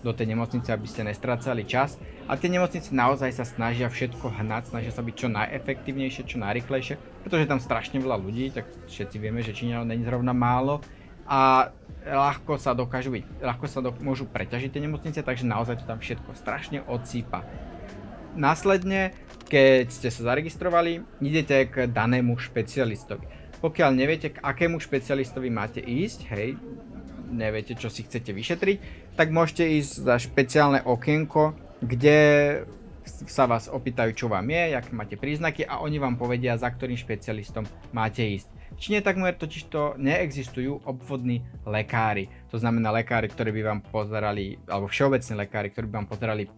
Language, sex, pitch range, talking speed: Slovak, male, 115-140 Hz, 155 wpm